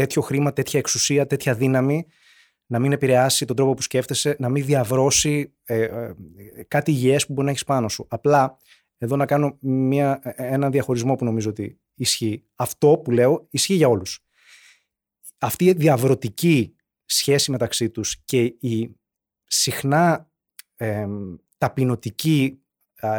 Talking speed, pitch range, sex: 140 wpm, 115-140 Hz, male